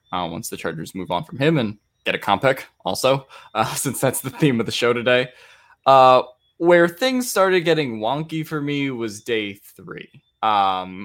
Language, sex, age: English, male, 10-29